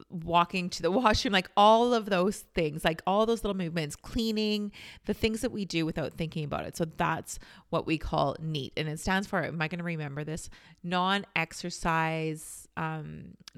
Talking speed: 180 wpm